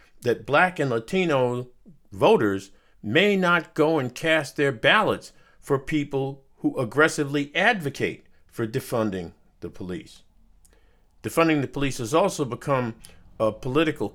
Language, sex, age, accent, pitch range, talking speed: English, male, 50-69, American, 110-165 Hz, 125 wpm